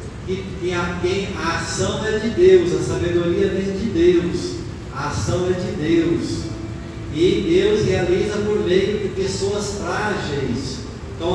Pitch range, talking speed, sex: 125-190 Hz, 150 wpm, male